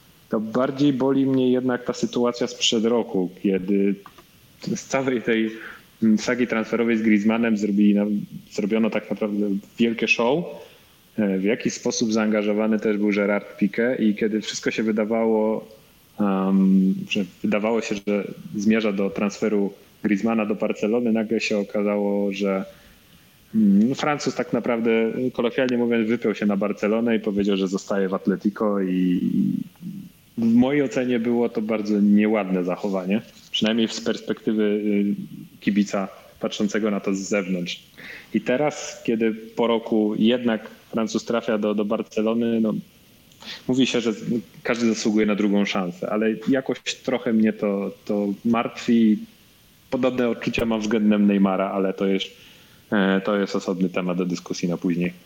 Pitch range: 100-120 Hz